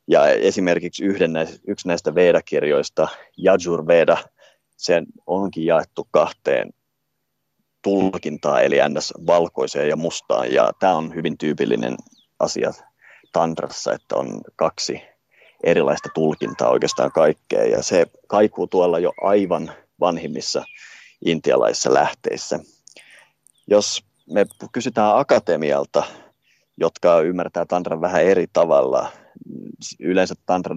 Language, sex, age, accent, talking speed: Finnish, male, 30-49, native, 105 wpm